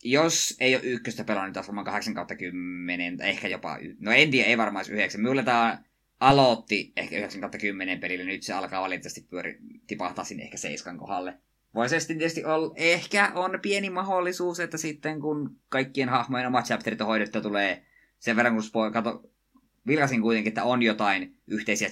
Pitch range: 100-145 Hz